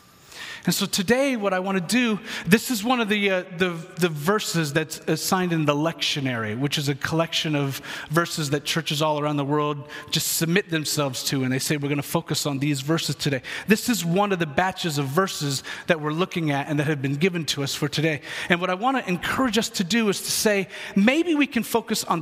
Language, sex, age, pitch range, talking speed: English, male, 40-59, 150-210 Hz, 235 wpm